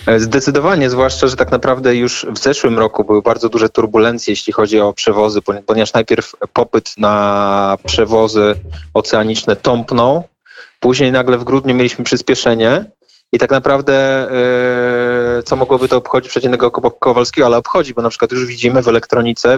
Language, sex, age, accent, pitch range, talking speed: Polish, male, 20-39, native, 110-125 Hz, 145 wpm